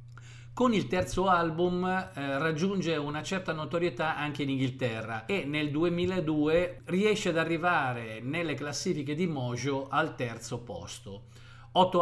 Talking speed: 130 wpm